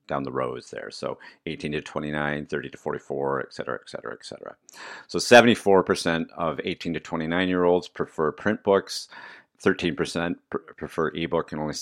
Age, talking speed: 50-69, 175 wpm